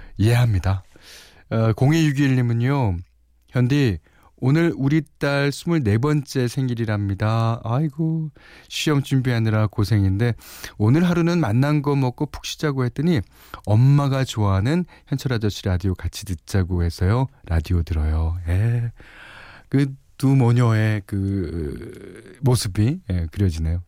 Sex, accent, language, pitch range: male, native, Korean, 90-135 Hz